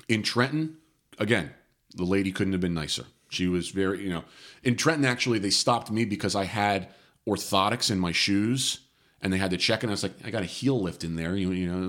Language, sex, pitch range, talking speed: English, male, 95-125 Hz, 230 wpm